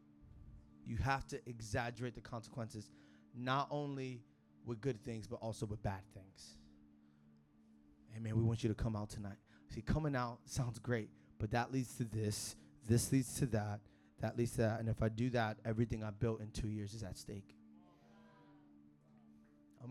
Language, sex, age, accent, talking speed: English, male, 20-39, American, 175 wpm